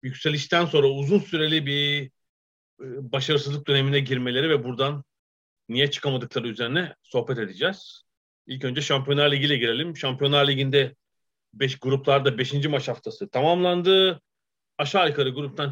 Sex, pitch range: male, 120-145 Hz